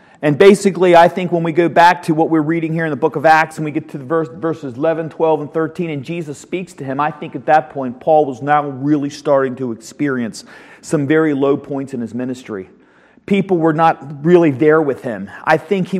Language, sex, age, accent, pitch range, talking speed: English, male, 40-59, American, 140-180 Hz, 235 wpm